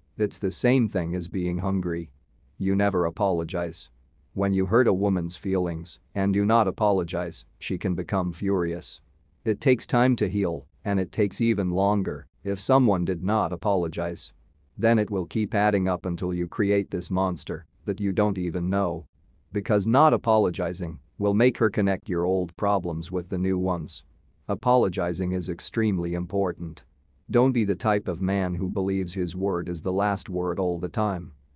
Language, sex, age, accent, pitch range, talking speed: English, male, 40-59, American, 85-100 Hz, 170 wpm